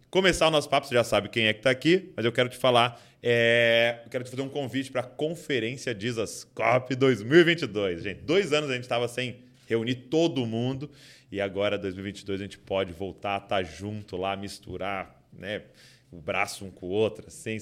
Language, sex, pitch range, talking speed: Portuguese, male, 110-130 Hz, 210 wpm